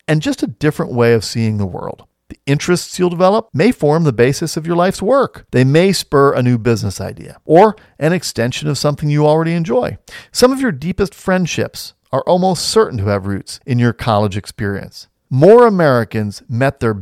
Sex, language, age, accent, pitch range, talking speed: male, English, 40-59, American, 115-180 Hz, 195 wpm